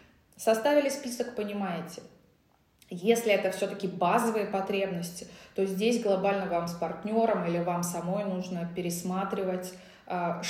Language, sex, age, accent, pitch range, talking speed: Russian, female, 20-39, native, 180-225 Hz, 110 wpm